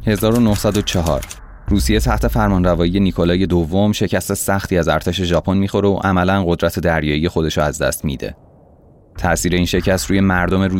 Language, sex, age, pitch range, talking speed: Persian, male, 30-49, 80-100 Hz, 145 wpm